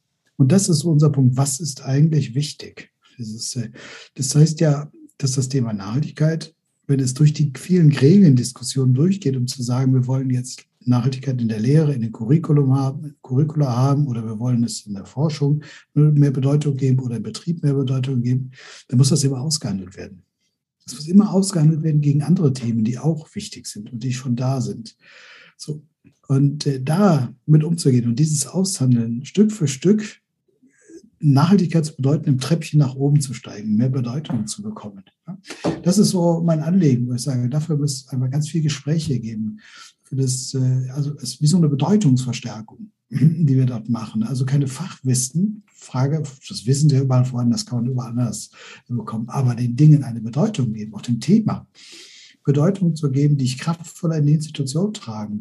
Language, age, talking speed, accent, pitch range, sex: German, 60-79, 180 wpm, German, 125-155 Hz, male